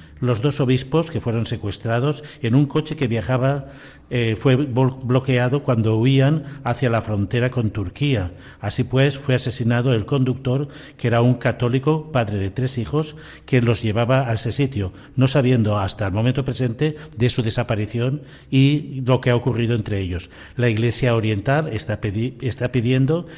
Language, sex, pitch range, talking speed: Spanish, male, 110-135 Hz, 160 wpm